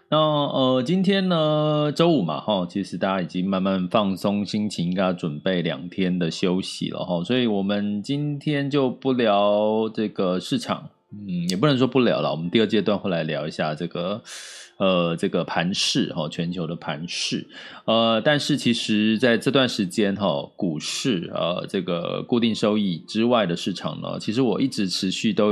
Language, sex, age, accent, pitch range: Chinese, male, 20-39, native, 90-130 Hz